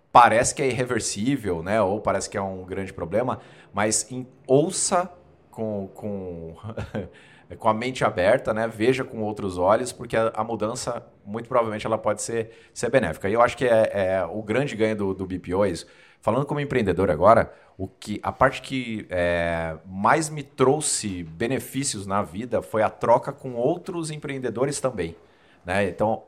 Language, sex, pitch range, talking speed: Portuguese, male, 95-130 Hz, 175 wpm